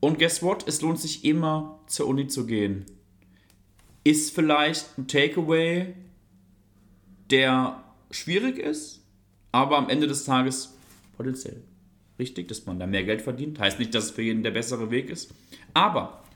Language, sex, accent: German, male, German